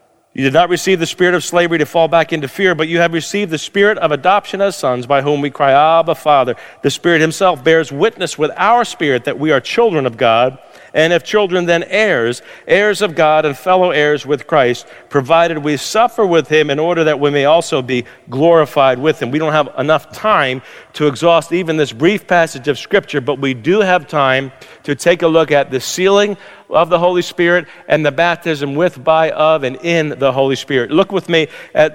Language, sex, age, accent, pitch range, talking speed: English, male, 50-69, American, 145-180 Hz, 215 wpm